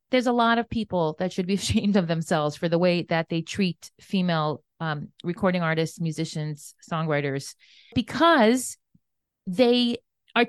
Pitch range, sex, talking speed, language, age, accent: 175-235 Hz, female, 150 wpm, English, 30-49, American